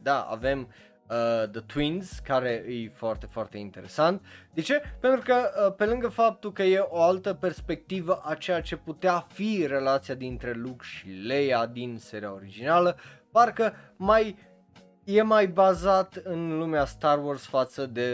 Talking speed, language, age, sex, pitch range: 155 wpm, Romanian, 20-39, male, 115-165 Hz